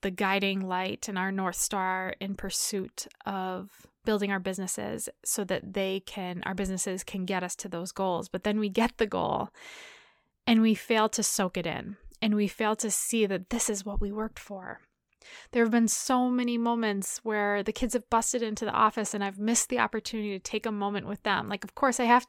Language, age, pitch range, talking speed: English, 20-39, 195-230 Hz, 215 wpm